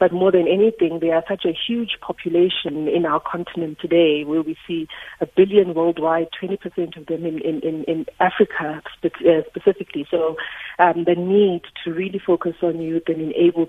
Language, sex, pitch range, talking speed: English, female, 165-185 Hz, 170 wpm